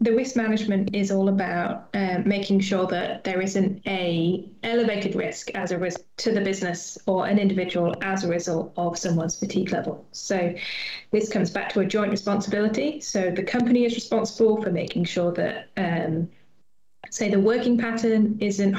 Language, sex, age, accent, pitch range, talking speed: English, female, 20-39, British, 185-215 Hz, 170 wpm